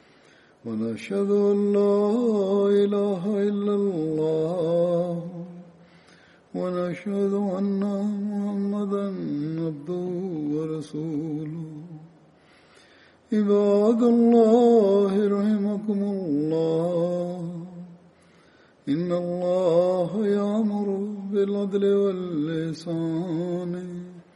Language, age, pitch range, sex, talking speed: Turkish, 60-79, 165-200 Hz, male, 45 wpm